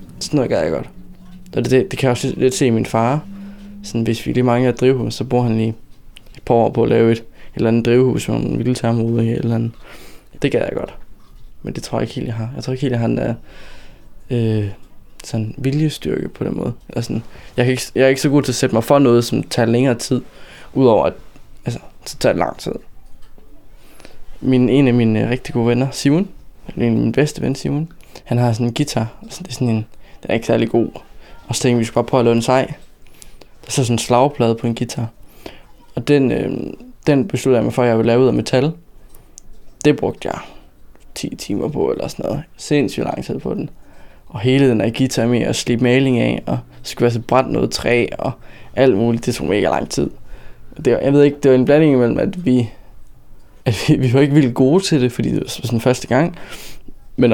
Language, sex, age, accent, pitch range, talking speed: Danish, male, 20-39, native, 115-135 Hz, 235 wpm